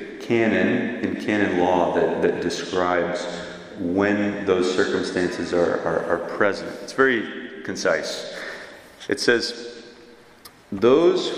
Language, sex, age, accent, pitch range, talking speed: English, male, 30-49, American, 95-120 Hz, 105 wpm